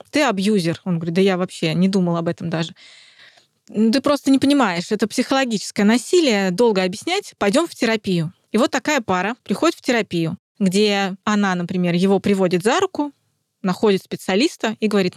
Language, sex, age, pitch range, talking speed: Russian, female, 20-39, 185-230 Hz, 165 wpm